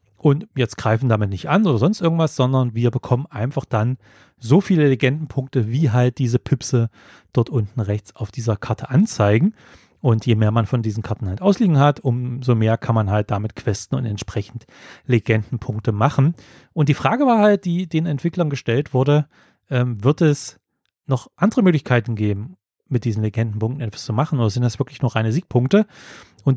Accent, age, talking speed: German, 30-49, 180 wpm